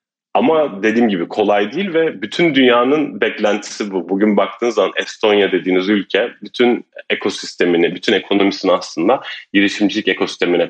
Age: 30-49